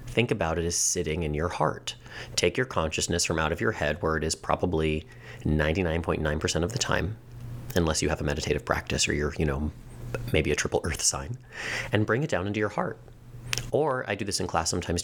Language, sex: English, male